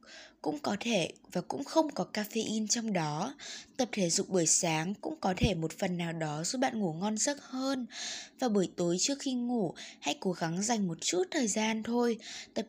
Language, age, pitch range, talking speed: Vietnamese, 20-39, 185-250 Hz, 210 wpm